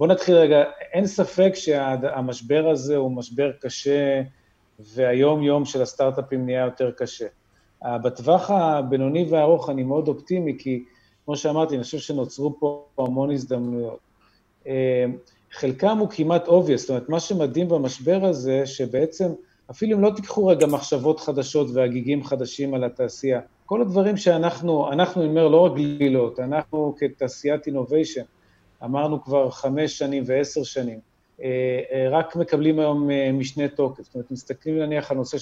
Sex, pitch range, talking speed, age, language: male, 130-165 Hz, 140 wpm, 40-59, Hebrew